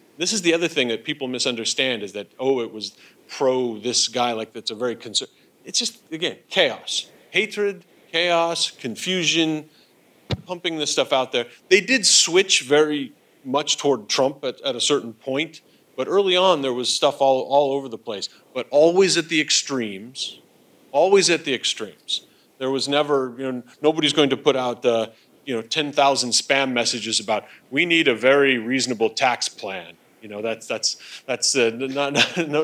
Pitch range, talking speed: 125-165 Hz, 180 wpm